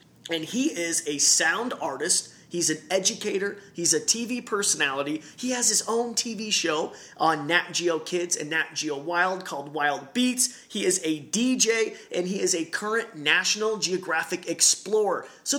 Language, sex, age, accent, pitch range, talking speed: English, male, 30-49, American, 165-220 Hz, 165 wpm